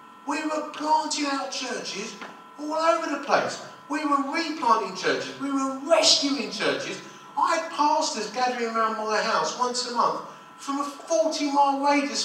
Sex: male